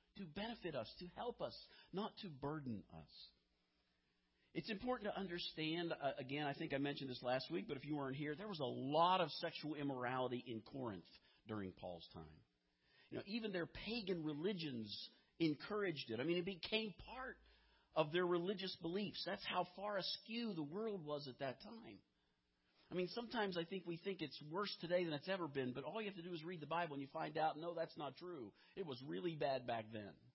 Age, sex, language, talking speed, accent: 50-69, male, English, 205 wpm, American